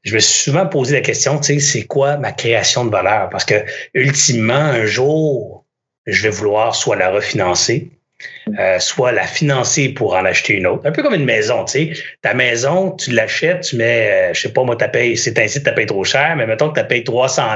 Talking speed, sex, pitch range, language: 230 wpm, male, 125-155 Hz, French